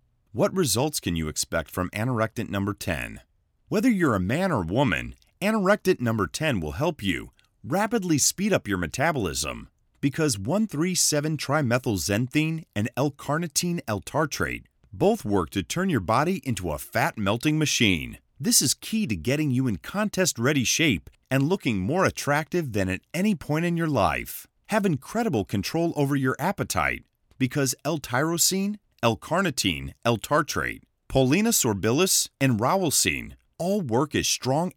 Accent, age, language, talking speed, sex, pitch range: American, 30-49, English, 140 wpm, male, 110-165 Hz